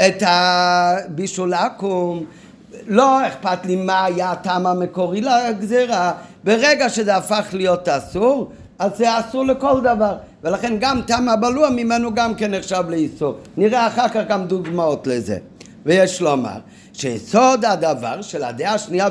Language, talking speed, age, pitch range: Hebrew, 140 wpm, 50-69, 175-230 Hz